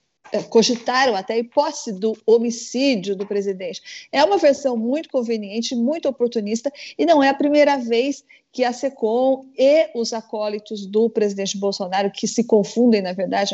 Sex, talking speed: female, 155 wpm